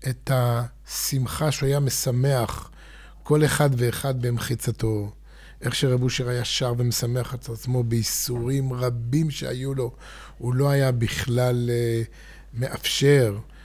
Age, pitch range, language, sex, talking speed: 50-69, 125-155 Hz, Hebrew, male, 110 wpm